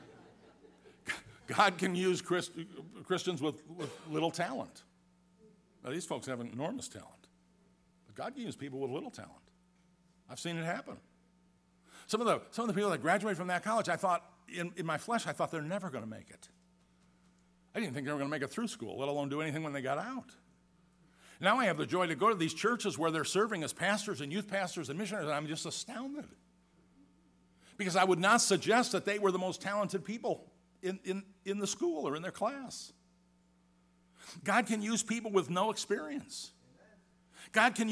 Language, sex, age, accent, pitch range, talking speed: English, male, 50-69, American, 140-210 Hz, 200 wpm